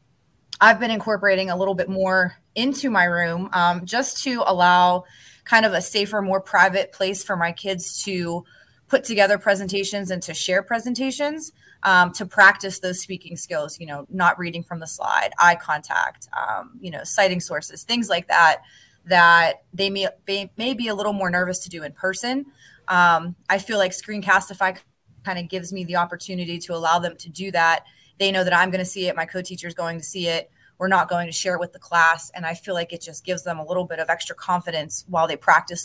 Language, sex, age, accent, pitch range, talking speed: English, female, 20-39, American, 170-195 Hz, 210 wpm